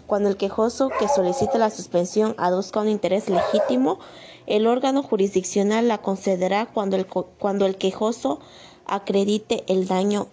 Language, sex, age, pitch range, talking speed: Spanish, female, 20-39, 185-220 Hz, 140 wpm